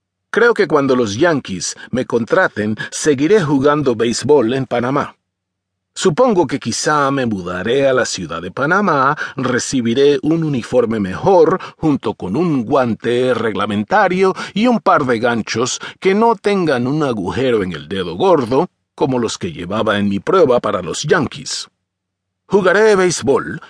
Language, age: English, 40-59